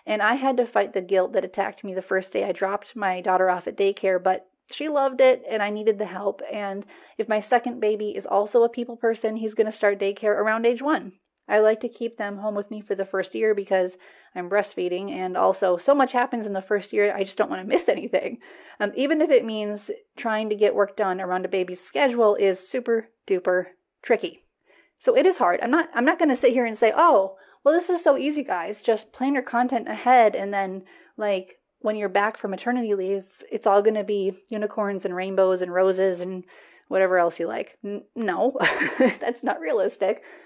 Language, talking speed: English, 220 wpm